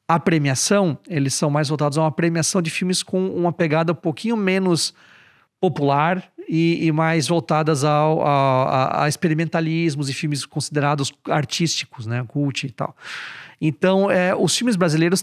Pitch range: 155-205 Hz